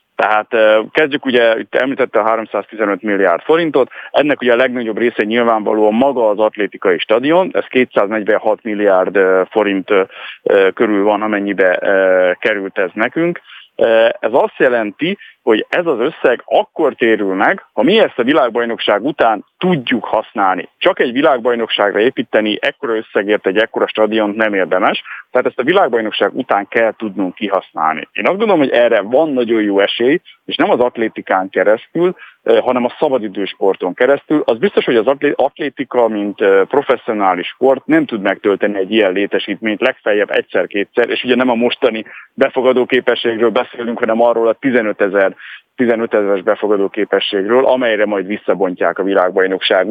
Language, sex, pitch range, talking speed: Hungarian, male, 105-130 Hz, 145 wpm